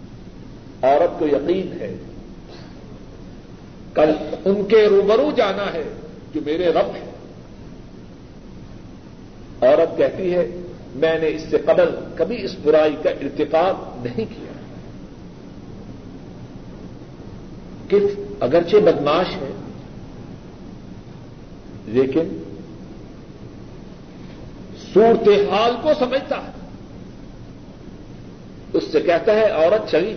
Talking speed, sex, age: 85 wpm, male, 60-79